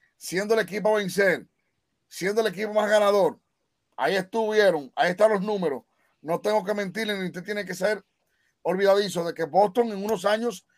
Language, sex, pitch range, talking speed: Spanish, male, 180-220 Hz, 180 wpm